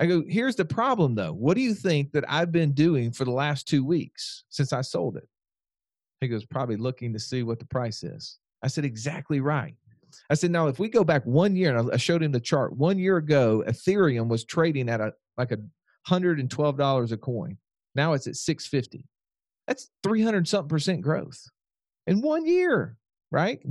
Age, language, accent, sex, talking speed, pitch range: 40-59, English, American, male, 190 wpm, 130-180 Hz